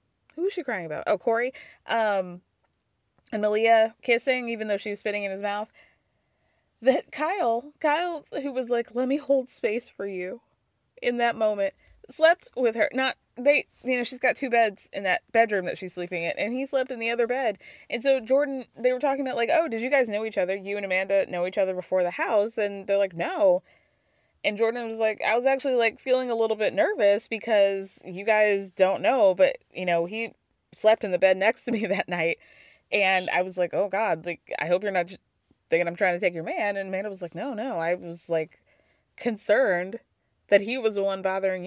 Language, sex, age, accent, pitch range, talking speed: English, female, 20-39, American, 190-260 Hz, 220 wpm